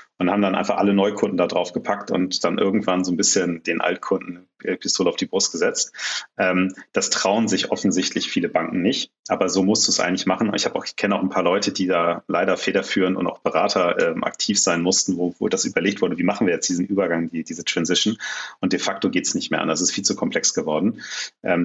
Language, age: German, 30-49